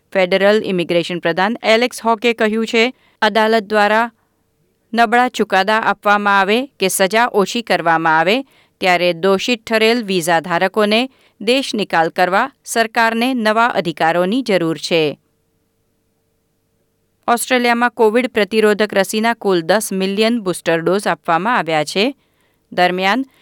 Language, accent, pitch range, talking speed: Gujarati, native, 175-230 Hz, 110 wpm